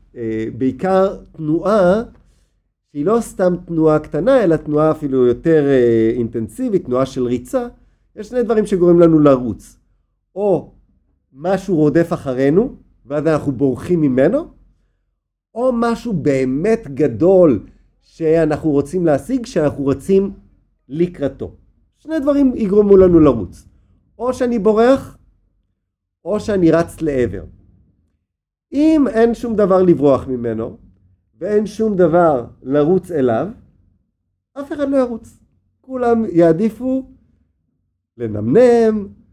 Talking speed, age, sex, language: 105 wpm, 50-69, male, Hebrew